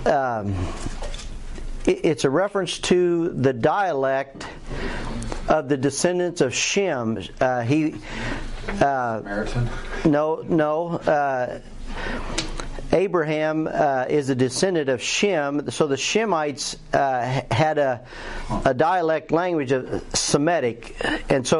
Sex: male